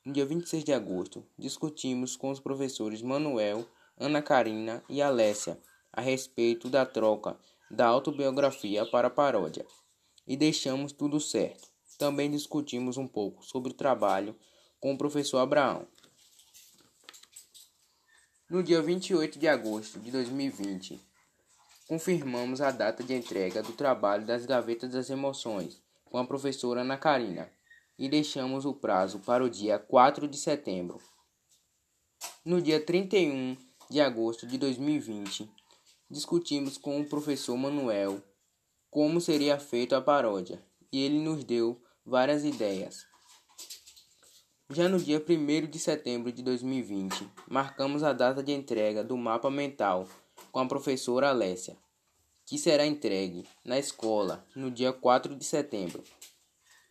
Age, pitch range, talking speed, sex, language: 20-39, 120-145 Hz, 130 wpm, male, Portuguese